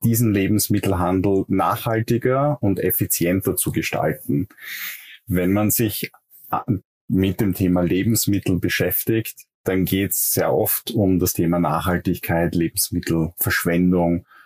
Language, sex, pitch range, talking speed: German, male, 90-105 Hz, 105 wpm